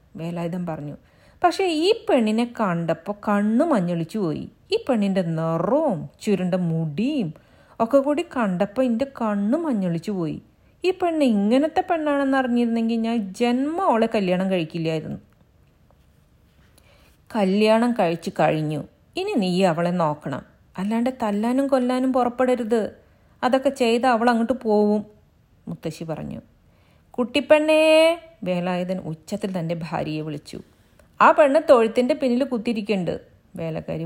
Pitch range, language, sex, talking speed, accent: 180-275 Hz, Malayalam, female, 105 wpm, native